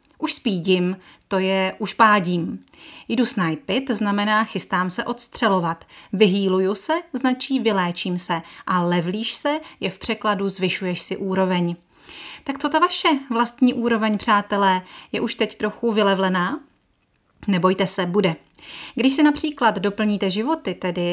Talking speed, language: 135 wpm, Czech